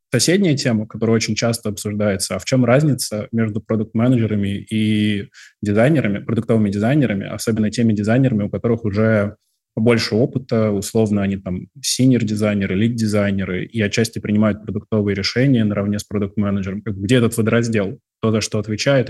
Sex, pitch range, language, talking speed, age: male, 105-115 Hz, Russian, 140 wpm, 20-39